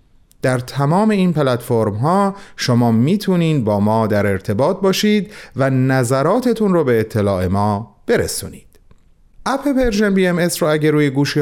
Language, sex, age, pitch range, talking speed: Persian, male, 40-59, 125-205 Hz, 145 wpm